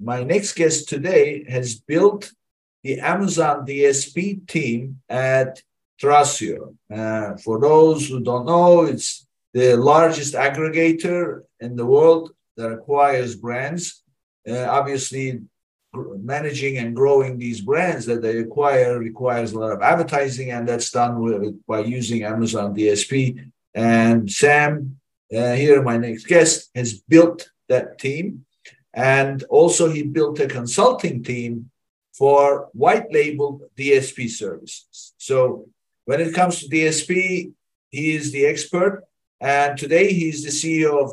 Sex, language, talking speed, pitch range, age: male, English, 135 wpm, 120-160 Hz, 50-69